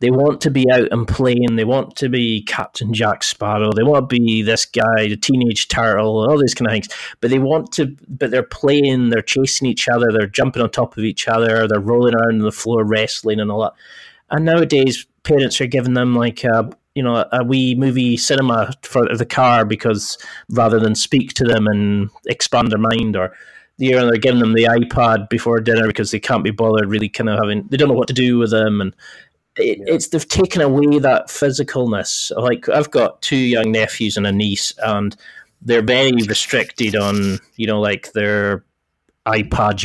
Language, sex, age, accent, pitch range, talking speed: English, male, 30-49, British, 110-125 Hz, 200 wpm